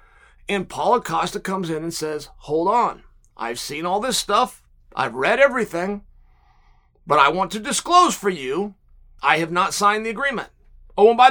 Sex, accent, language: male, American, English